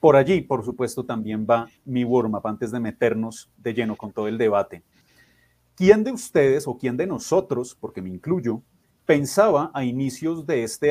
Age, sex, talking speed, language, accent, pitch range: 30-49, male, 175 wpm, Spanish, Colombian, 120-155 Hz